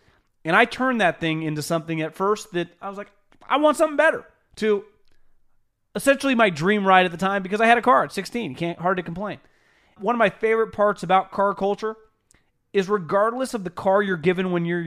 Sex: male